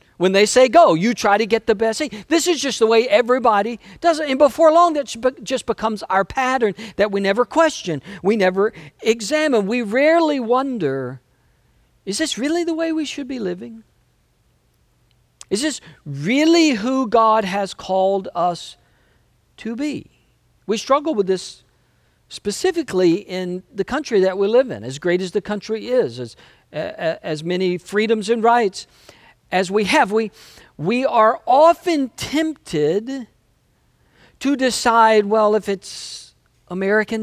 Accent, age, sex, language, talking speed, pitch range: American, 50-69, male, English, 155 wpm, 175-250 Hz